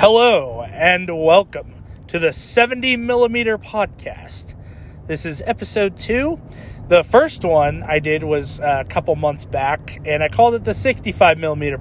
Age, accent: 30-49, American